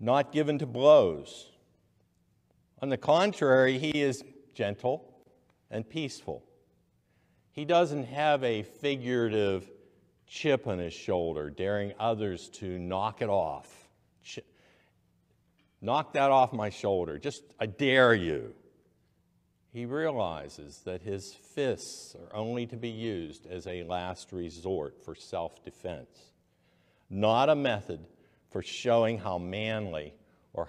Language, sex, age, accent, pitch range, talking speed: English, male, 60-79, American, 90-135 Hz, 115 wpm